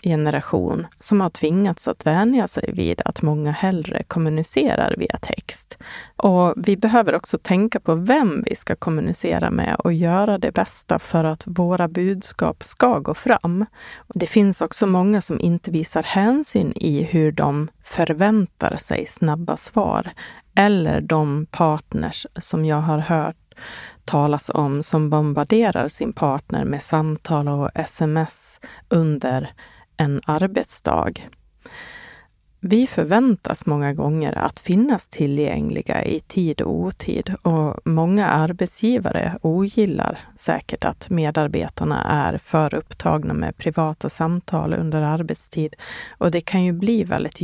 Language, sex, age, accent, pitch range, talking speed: Swedish, female, 30-49, native, 155-195 Hz, 130 wpm